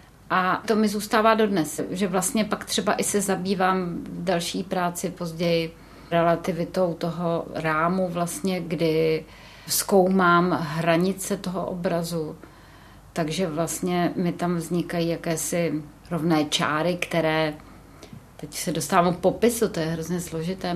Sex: female